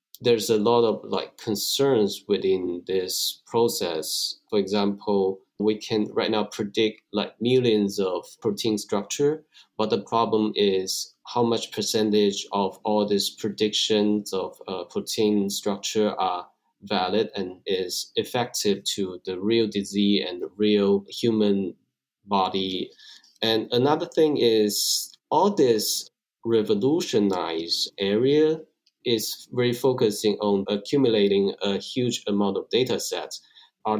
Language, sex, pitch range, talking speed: English, male, 100-110 Hz, 125 wpm